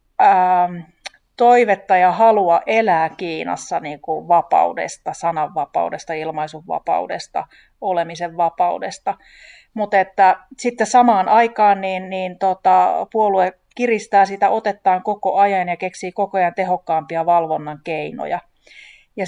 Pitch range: 175-210 Hz